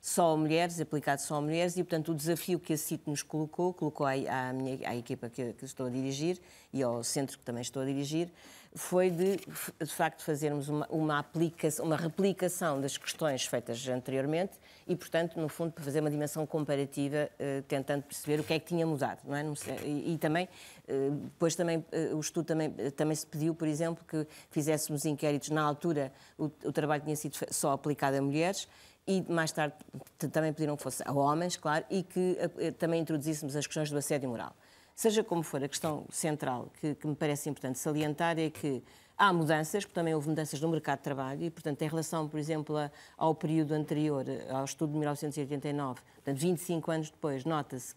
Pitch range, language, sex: 140-165 Hz, Portuguese, female